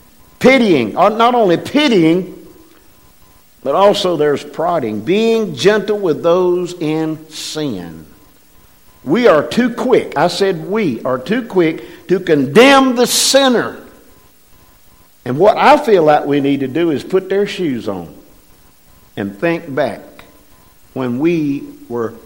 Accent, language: American, English